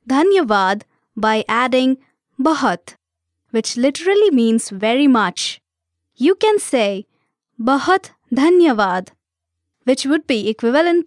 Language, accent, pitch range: English, Indian, 195-290 Hz